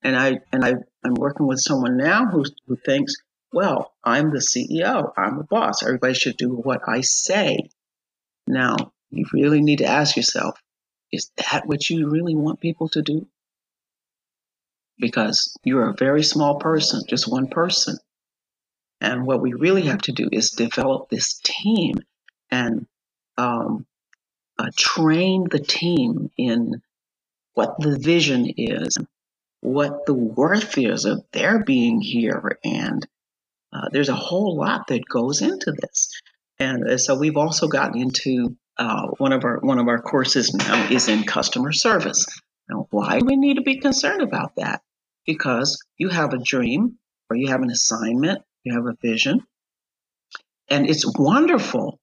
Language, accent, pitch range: English, American, 130-185 Hz